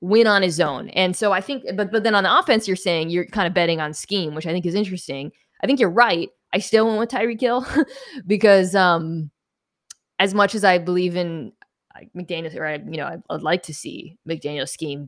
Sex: female